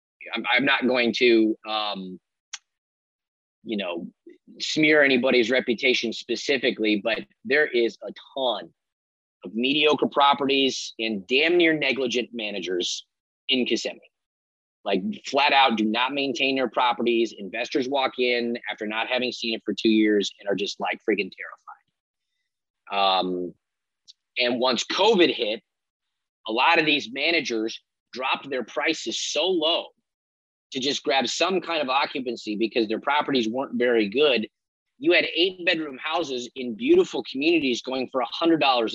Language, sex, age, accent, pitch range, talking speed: English, male, 30-49, American, 110-140 Hz, 140 wpm